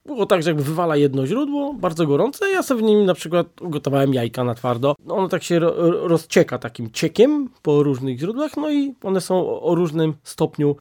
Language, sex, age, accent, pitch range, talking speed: Polish, male, 20-39, native, 135-175 Hz, 205 wpm